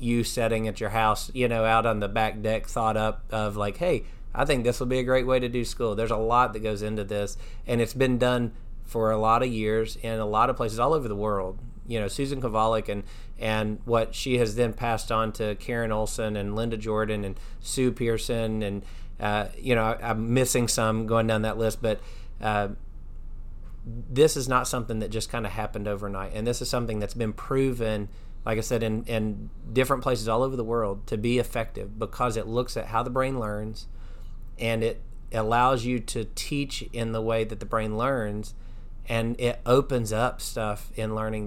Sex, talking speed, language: male, 215 wpm, English